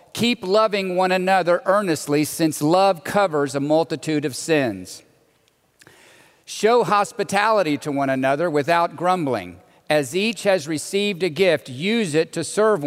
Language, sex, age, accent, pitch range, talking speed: English, male, 50-69, American, 150-200 Hz, 135 wpm